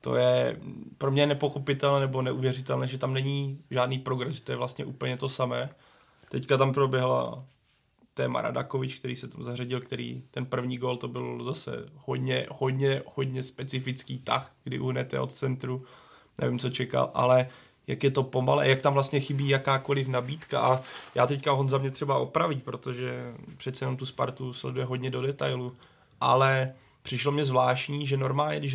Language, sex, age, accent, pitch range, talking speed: Czech, male, 20-39, native, 125-135 Hz, 170 wpm